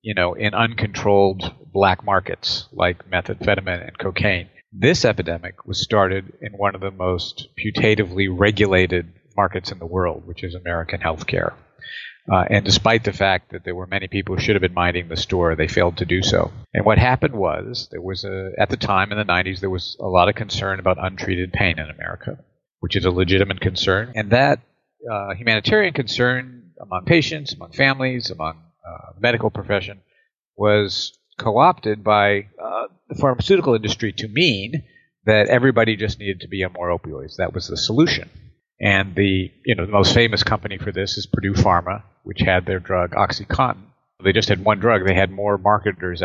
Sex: male